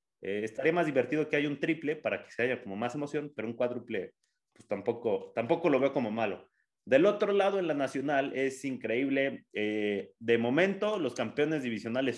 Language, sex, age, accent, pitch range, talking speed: Spanish, male, 30-49, Mexican, 110-150 Hz, 190 wpm